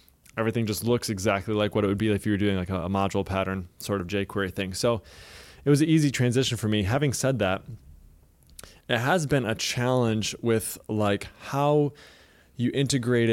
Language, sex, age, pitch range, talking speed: English, male, 20-39, 100-120 Hz, 190 wpm